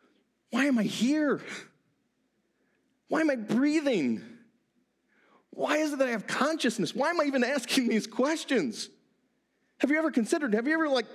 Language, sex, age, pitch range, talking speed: English, male, 40-59, 175-250 Hz, 160 wpm